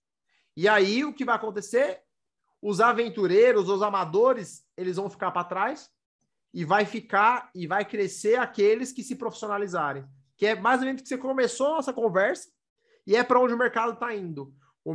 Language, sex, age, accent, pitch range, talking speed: Portuguese, male, 30-49, Brazilian, 170-255 Hz, 180 wpm